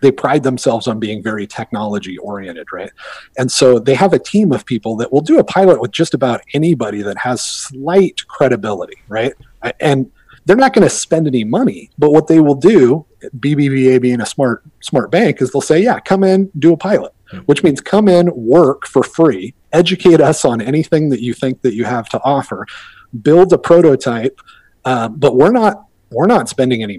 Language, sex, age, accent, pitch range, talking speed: English, male, 30-49, American, 115-160 Hz, 200 wpm